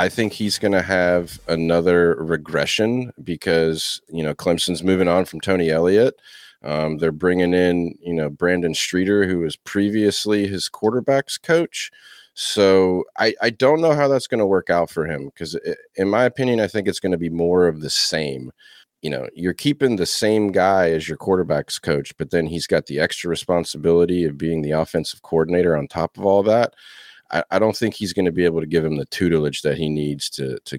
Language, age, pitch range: English, 30-49, 80-100 Hz